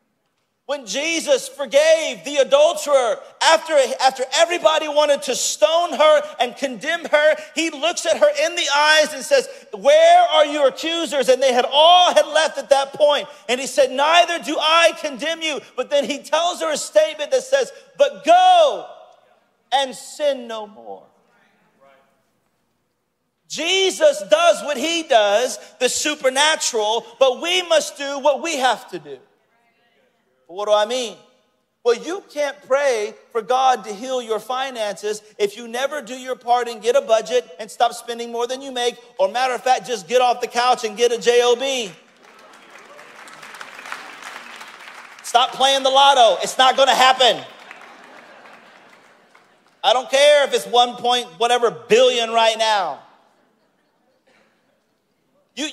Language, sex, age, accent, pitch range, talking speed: English, male, 40-59, American, 245-310 Hz, 150 wpm